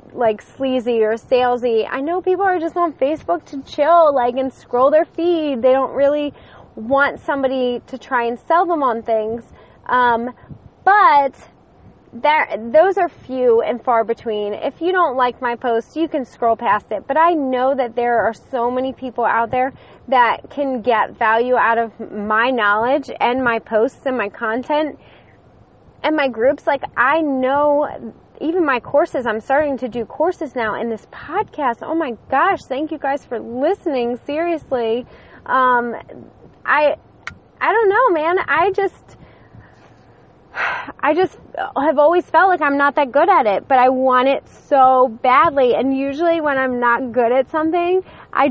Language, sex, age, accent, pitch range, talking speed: English, female, 20-39, American, 240-305 Hz, 170 wpm